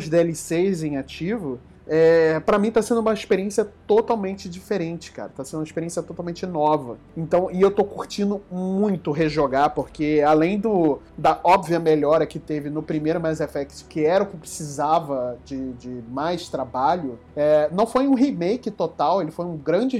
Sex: male